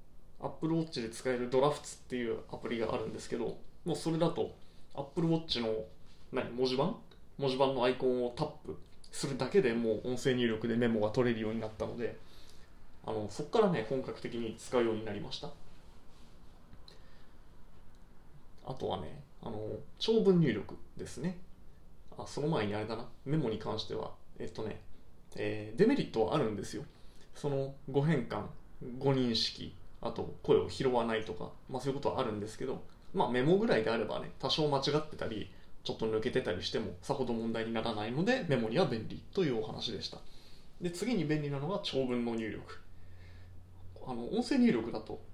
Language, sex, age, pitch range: Japanese, male, 20-39, 105-145 Hz